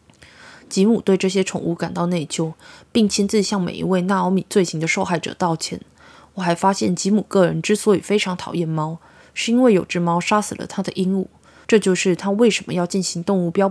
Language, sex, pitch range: Chinese, female, 170-195 Hz